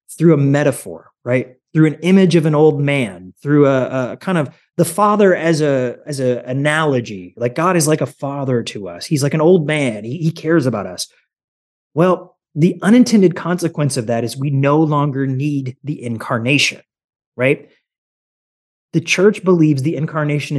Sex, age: male, 30-49